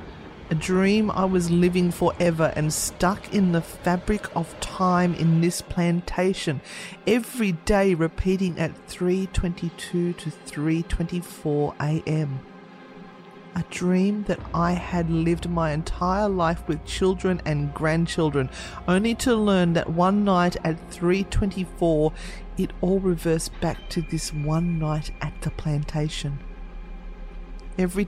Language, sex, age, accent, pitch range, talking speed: English, female, 40-59, Australian, 160-195 Hz, 130 wpm